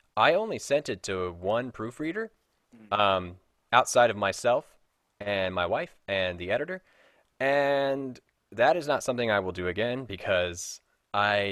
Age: 20-39